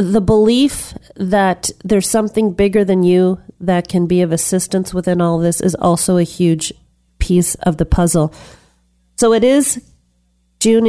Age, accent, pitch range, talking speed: 40-59, American, 170-210 Hz, 155 wpm